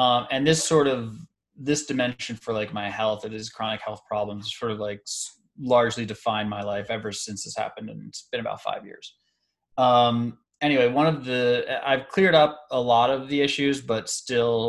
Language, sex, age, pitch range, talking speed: English, male, 20-39, 105-130 Hz, 195 wpm